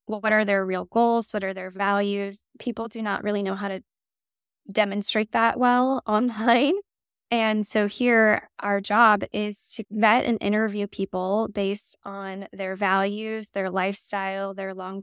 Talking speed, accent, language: 160 wpm, American, English